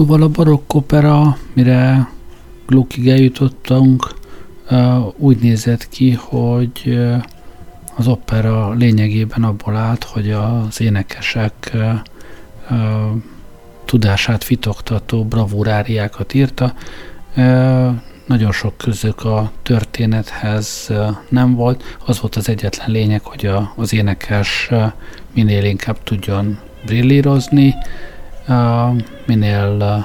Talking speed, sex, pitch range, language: 85 wpm, male, 105-125 Hz, Hungarian